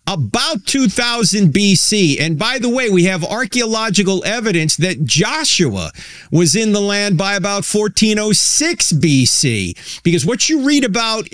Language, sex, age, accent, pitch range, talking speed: English, male, 50-69, American, 160-200 Hz, 140 wpm